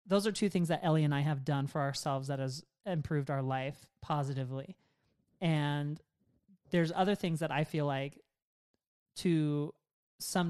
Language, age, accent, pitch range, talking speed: English, 30-49, American, 150-200 Hz, 160 wpm